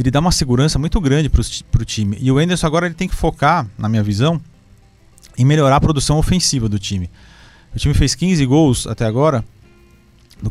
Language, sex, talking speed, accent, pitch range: Portuguese, male, 200 wpm, Brazilian, 110-140 Hz